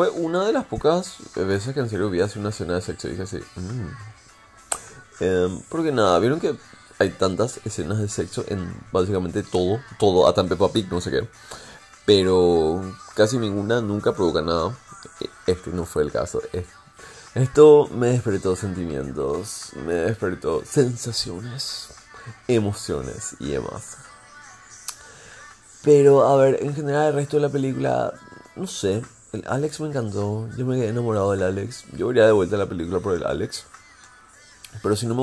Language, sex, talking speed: Spanish, male, 165 wpm